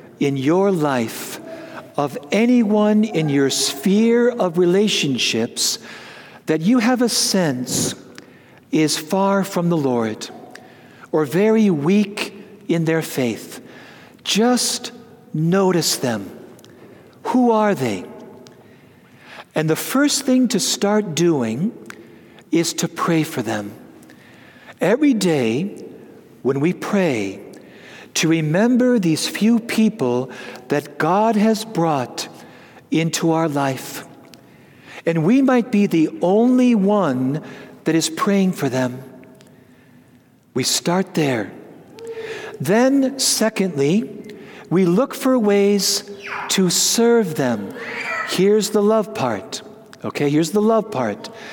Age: 60-79